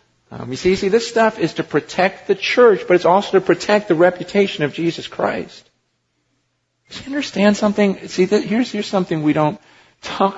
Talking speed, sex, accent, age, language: 195 wpm, male, American, 40-59, English